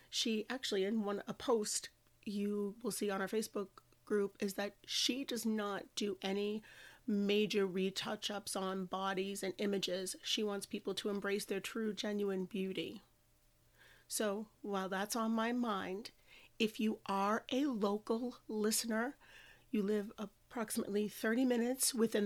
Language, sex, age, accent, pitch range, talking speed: English, female, 30-49, American, 195-220 Hz, 145 wpm